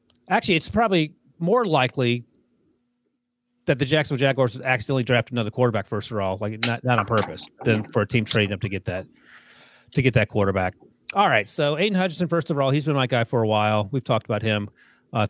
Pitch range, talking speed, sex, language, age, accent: 110-135 Hz, 215 wpm, male, English, 30-49, American